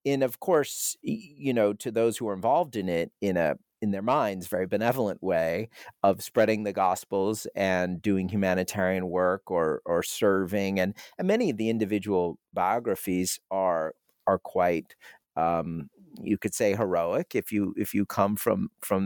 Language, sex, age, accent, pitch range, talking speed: English, male, 40-59, American, 95-115 Hz, 165 wpm